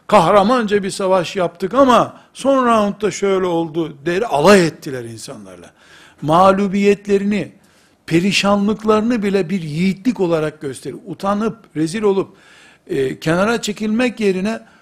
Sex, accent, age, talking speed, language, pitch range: male, native, 60-79, 110 wpm, Turkish, 165-210 Hz